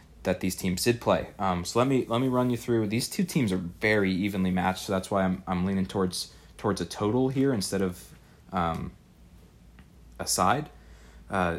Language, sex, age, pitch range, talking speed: English, male, 30-49, 95-115 Hz, 195 wpm